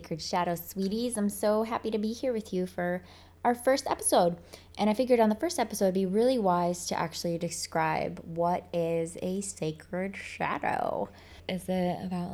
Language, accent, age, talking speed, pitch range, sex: English, American, 20-39, 180 wpm, 170-230 Hz, female